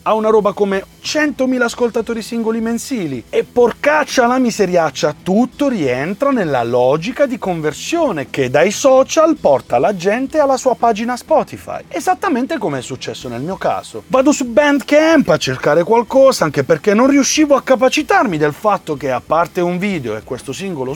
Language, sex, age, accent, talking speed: Italian, male, 30-49, native, 165 wpm